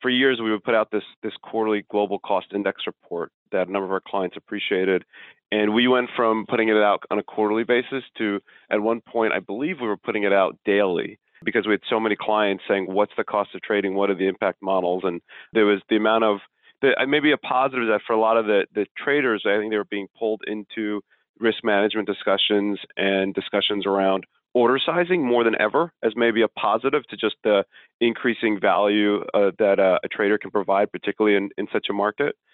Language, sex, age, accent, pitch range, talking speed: English, male, 40-59, American, 100-115 Hz, 220 wpm